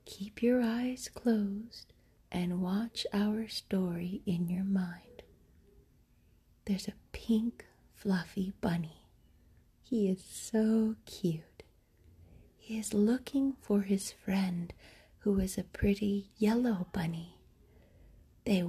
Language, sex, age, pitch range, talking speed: English, female, 40-59, 170-215 Hz, 105 wpm